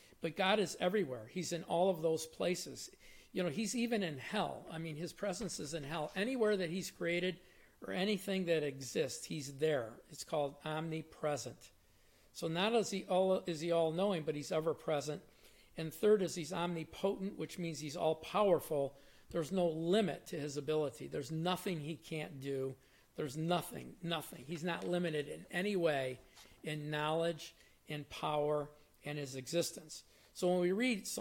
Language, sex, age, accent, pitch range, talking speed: English, male, 50-69, American, 155-180 Hz, 170 wpm